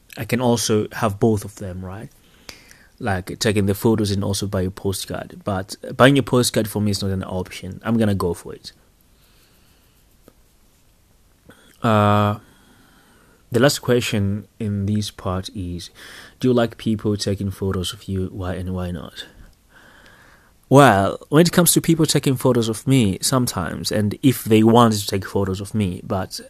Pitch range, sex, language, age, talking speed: 95-120 Hz, male, English, 20-39, 170 wpm